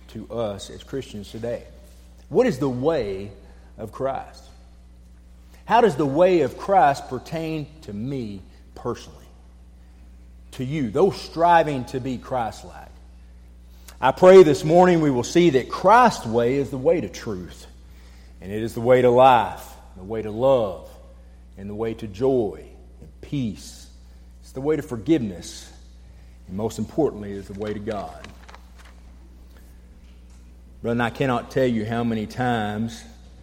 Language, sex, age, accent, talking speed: English, male, 40-59, American, 150 wpm